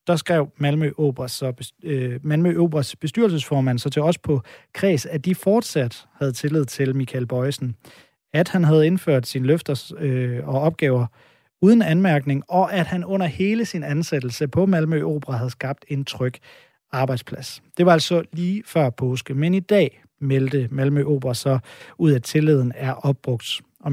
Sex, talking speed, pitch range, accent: male, 155 wpm, 130-170 Hz, native